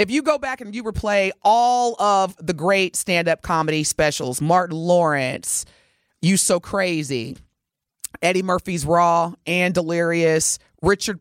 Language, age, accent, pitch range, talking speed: English, 30-49, American, 165-225 Hz, 135 wpm